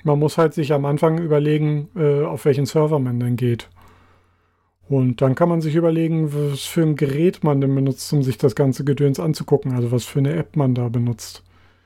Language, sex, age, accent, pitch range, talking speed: German, male, 40-59, German, 130-170 Hz, 200 wpm